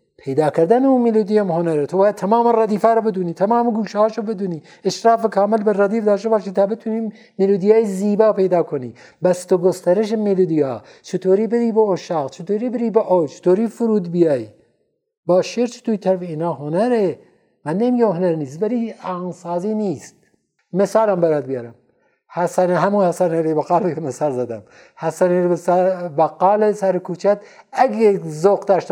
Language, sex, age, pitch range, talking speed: Persian, male, 60-79, 155-210 Hz, 150 wpm